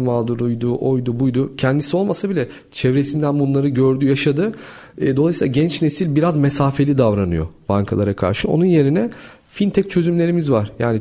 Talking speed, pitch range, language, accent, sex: 130 wpm, 135-175 Hz, Turkish, native, male